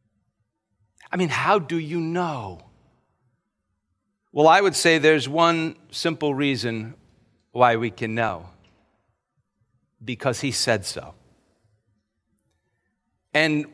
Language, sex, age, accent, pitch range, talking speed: English, male, 50-69, American, 110-155 Hz, 100 wpm